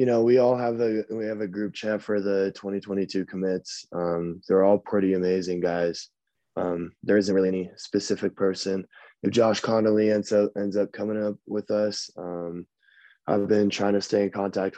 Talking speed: 190 wpm